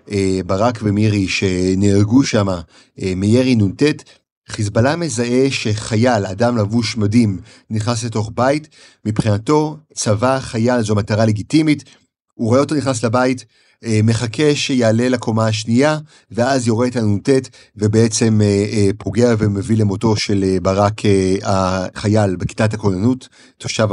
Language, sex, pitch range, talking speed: Hebrew, male, 100-125 Hz, 130 wpm